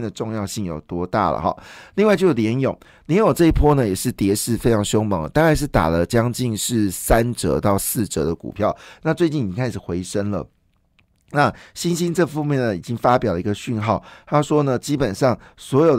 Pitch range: 105-140 Hz